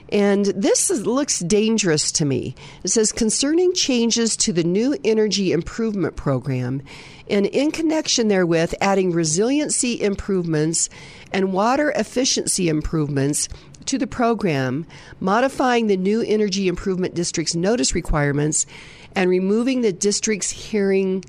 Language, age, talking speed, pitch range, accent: English, 50-69, 125 wpm, 160-220 Hz, American